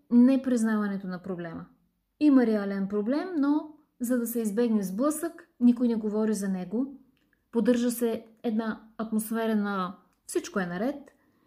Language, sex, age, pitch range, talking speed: Bulgarian, female, 20-39, 210-270 Hz, 135 wpm